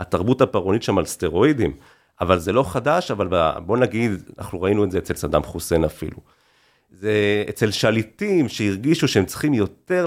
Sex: male